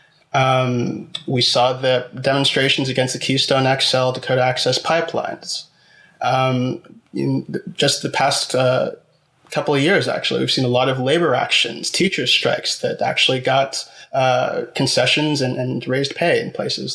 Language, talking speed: English, 150 wpm